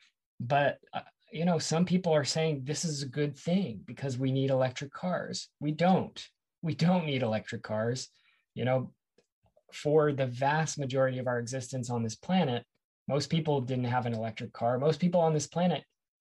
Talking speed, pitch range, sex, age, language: 180 wpm, 120-145 Hz, male, 20-39, English